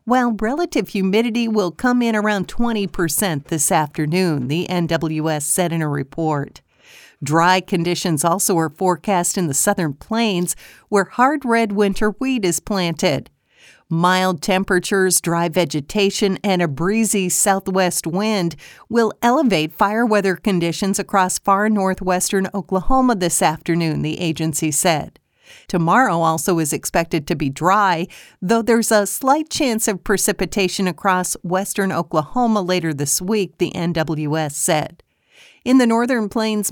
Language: English